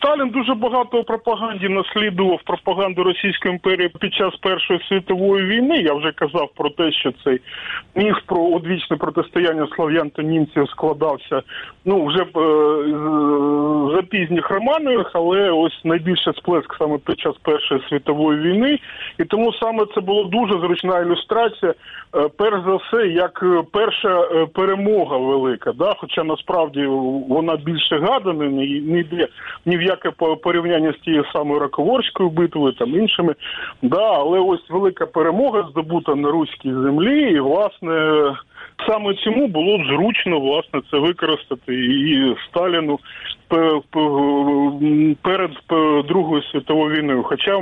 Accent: native